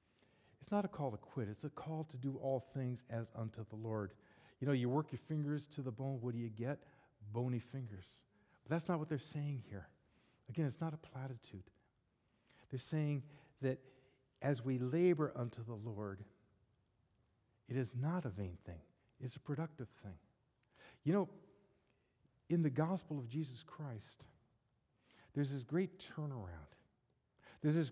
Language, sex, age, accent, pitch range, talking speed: English, male, 50-69, American, 115-150 Hz, 165 wpm